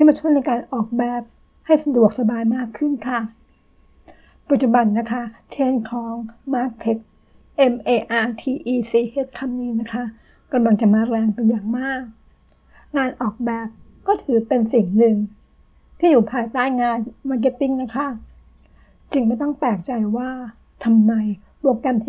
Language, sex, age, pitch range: Thai, female, 60-79, 230-265 Hz